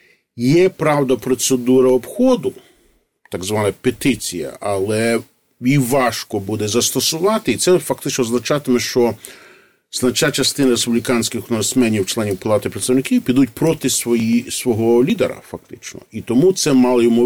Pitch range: 105-135 Hz